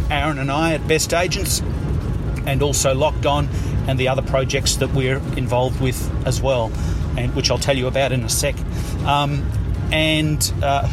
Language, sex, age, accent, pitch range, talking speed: English, male, 40-59, Australian, 110-135 Hz, 175 wpm